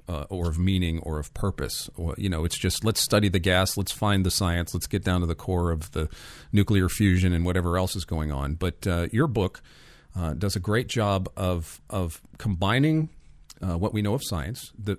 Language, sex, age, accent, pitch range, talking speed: English, male, 40-59, American, 80-105 Hz, 220 wpm